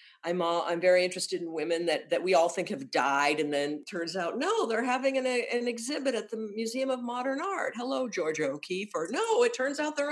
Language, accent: English, American